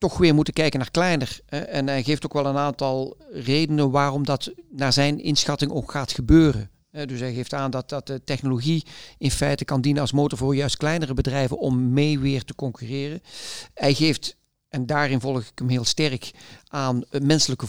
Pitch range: 130-150 Hz